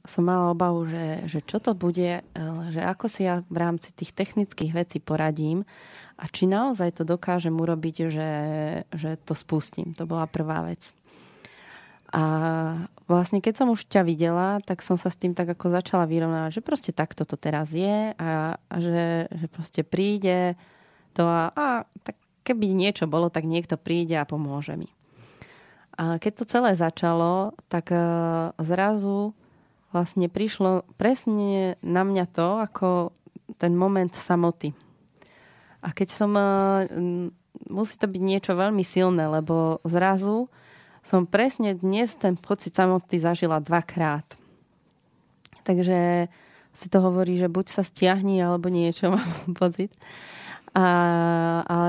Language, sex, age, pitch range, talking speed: Slovak, female, 20-39, 165-195 Hz, 145 wpm